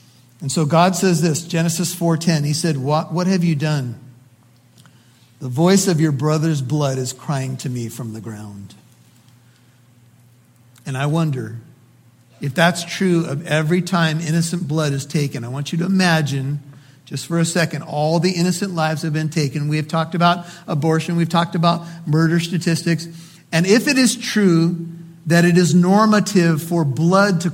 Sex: male